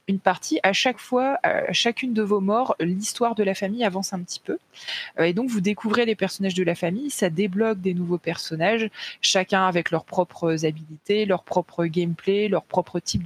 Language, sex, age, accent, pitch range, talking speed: French, female, 20-39, French, 170-215 Hz, 195 wpm